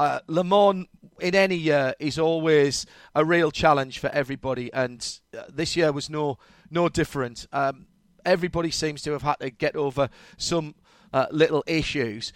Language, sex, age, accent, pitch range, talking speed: English, male, 40-59, British, 150-185 Hz, 160 wpm